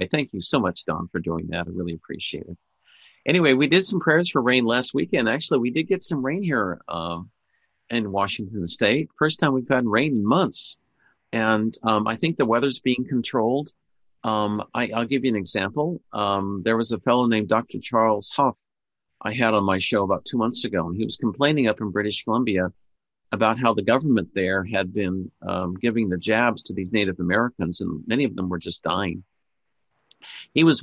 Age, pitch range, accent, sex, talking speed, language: 50-69, 95-130 Hz, American, male, 200 wpm, English